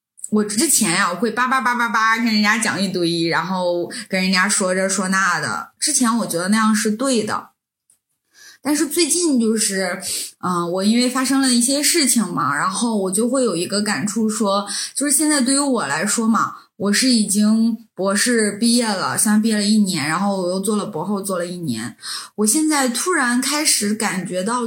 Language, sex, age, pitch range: Chinese, female, 20-39, 195-255 Hz